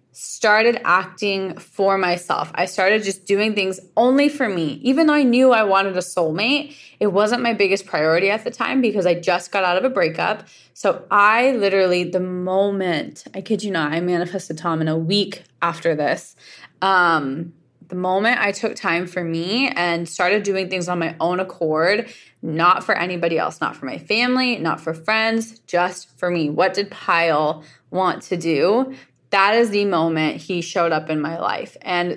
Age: 20-39